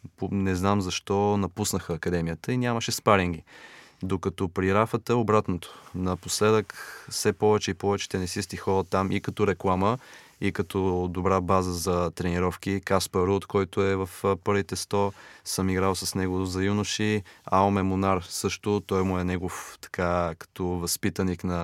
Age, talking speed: 20-39, 145 wpm